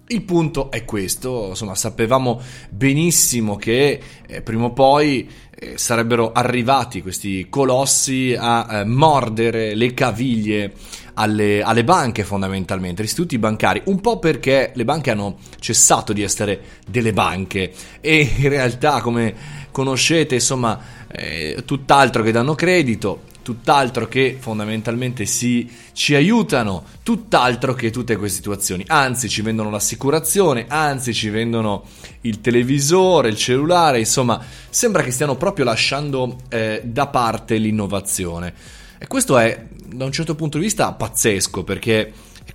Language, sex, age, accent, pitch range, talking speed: Italian, male, 20-39, native, 110-140 Hz, 135 wpm